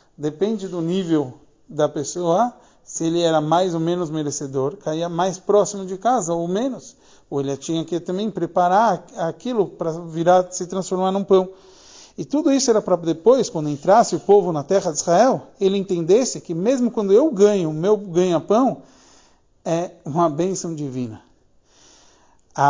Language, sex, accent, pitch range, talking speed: Portuguese, male, Brazilian, 155-195 Hz, 160 wpm